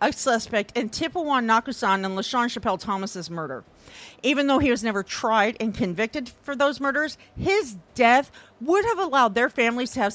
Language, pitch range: English, 195-270 Hz